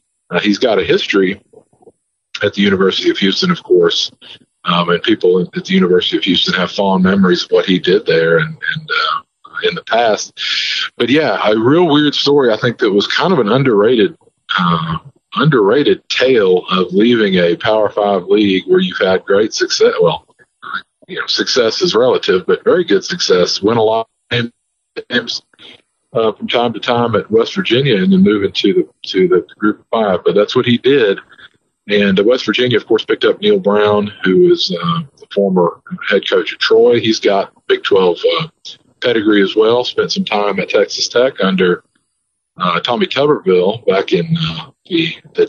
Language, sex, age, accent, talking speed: English, male, 40-59, American, 185 wpm